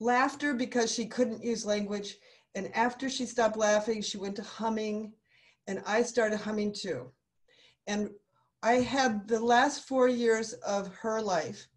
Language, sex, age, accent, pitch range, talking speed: English, female, 50-69, American, 190-235 Hz, 155 wpm